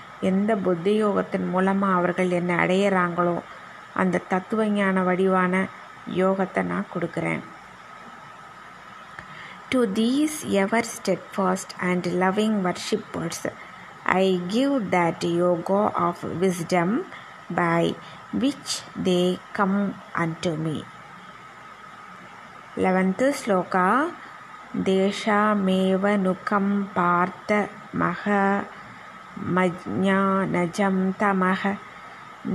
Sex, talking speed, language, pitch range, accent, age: female, 70 wpm, Tamil, 185-205 Hz, native, 20-39